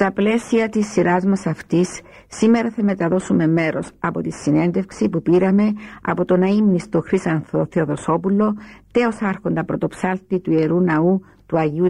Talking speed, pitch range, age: 145 wpm, 165-200 Hz, 60-79